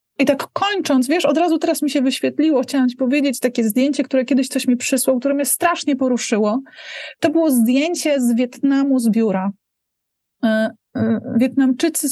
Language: Polish